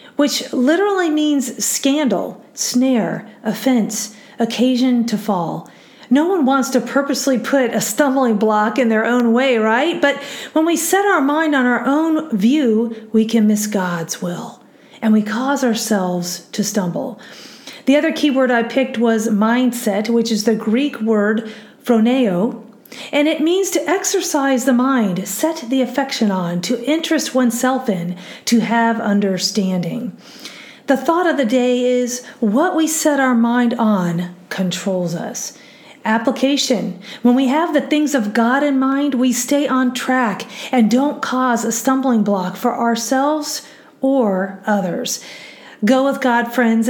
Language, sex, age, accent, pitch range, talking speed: English, female, 40-59, American, 220-275 Hz, 150 wpm